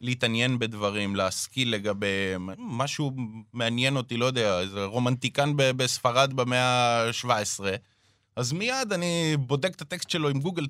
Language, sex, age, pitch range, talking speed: Hebrew, male, 20-39, 110-160 Hz, 135 wpm